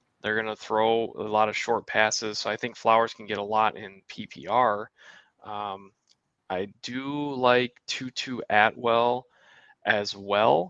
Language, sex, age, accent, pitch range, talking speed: English, male, 20-39, American, 105-120 Hz, 150 wpm